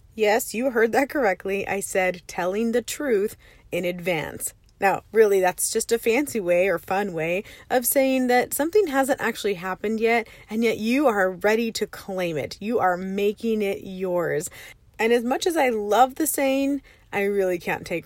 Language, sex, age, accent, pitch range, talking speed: English, female, 30-49, American, 175-225 Hz, 185 wpm